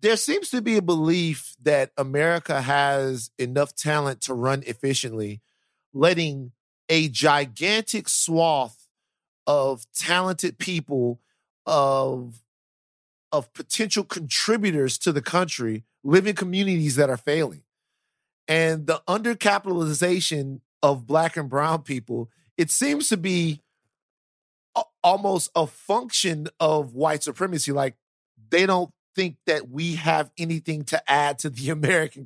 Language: English